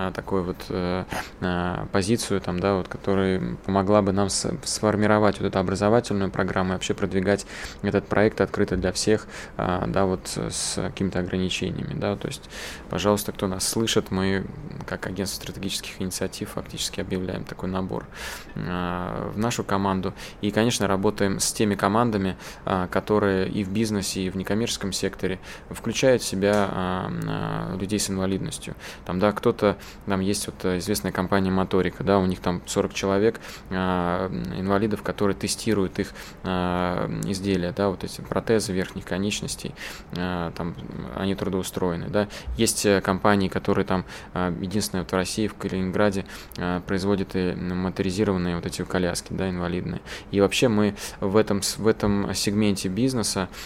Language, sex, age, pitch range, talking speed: Russian, male, 20-39, 90-105 Hz, 145 wpm